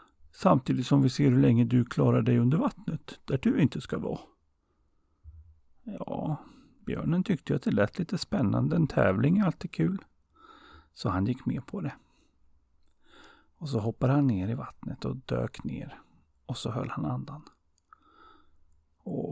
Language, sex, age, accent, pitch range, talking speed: Swedish, male, 40-59, native, 95-145 Hz, 160 wpm